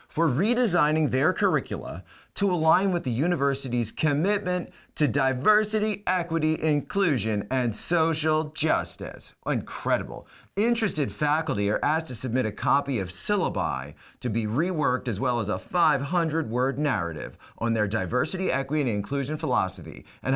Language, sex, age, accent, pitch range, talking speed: English, male, 40-59, American, 105-155 Hz, 135 wpm